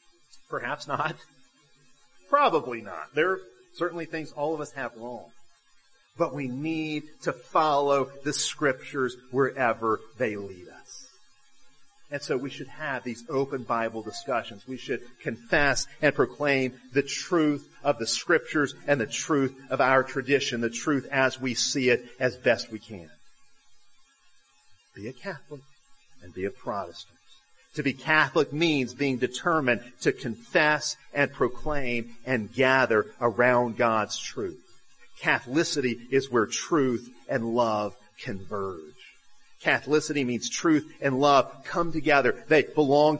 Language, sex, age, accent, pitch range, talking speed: English, male, 40-59, American, 120-150 Hz, 135 wpm